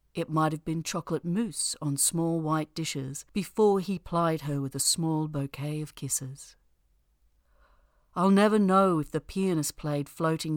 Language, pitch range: English, 140-175 Hz